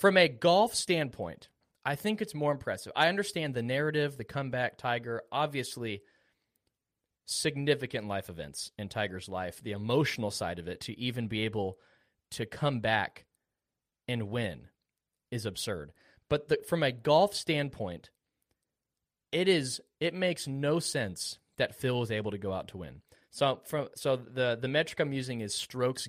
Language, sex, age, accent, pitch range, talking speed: English, male, 20-39, American, 110-150 Hz, 160 wpm